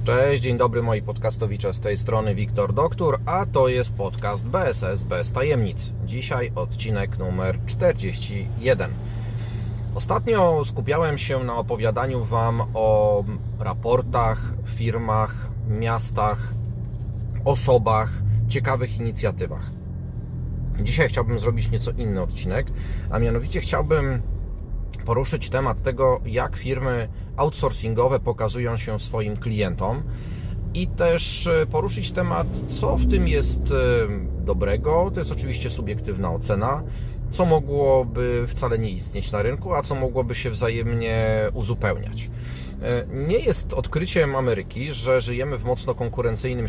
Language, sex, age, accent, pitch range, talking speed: Polish, male, 30-49, native, 105-125 Hz, 115 wpm